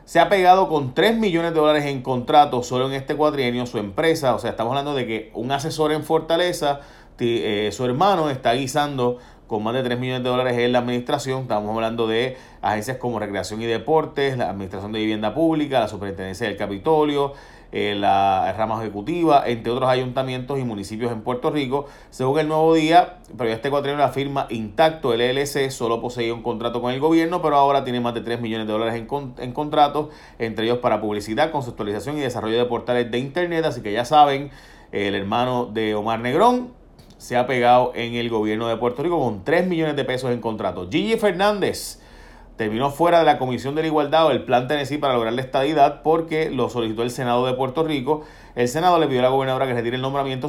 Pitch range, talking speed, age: 115-145 Hz, 210 wpm, 30-49